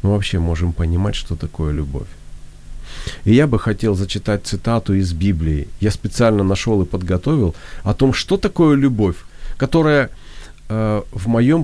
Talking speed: 150 wpm